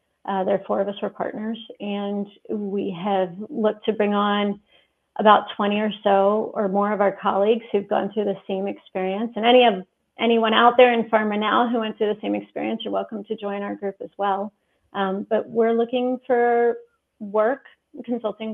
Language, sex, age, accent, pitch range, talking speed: English, female, 30-49, American, 195-230 Hz, 195 wpm